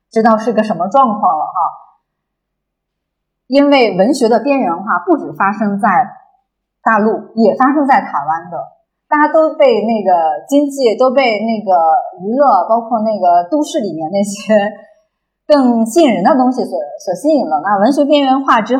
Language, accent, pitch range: Chinese, native, 195-285 Hz